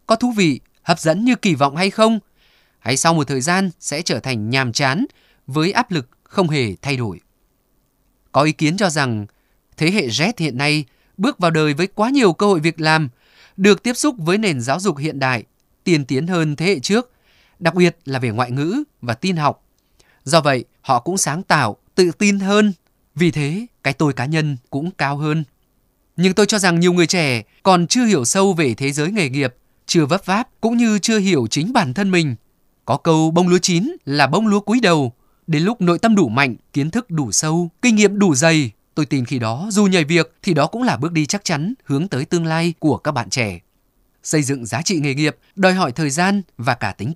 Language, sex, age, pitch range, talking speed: Vietnamese, male, 20-39, 140-190 Hz, 225 wpm